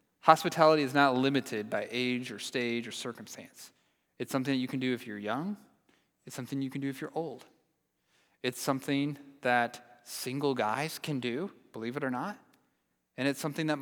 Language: English